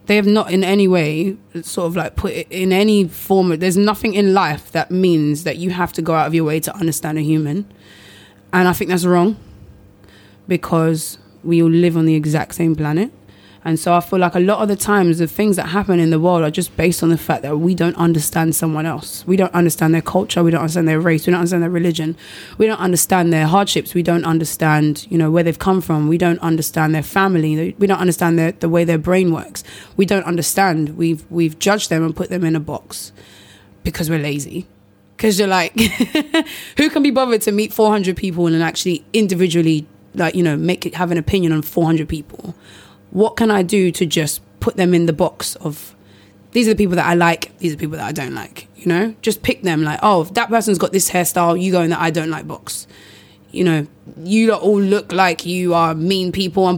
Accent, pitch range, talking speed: British, 160-195 Hz, 230 wpm